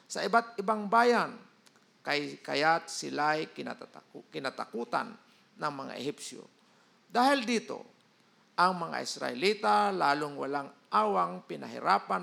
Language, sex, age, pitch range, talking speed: Filipino, male, 50-69, 160-220 Hz, 95 wpm